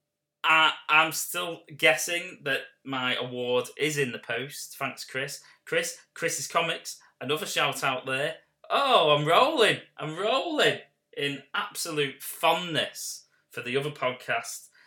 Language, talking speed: English, 120 wpm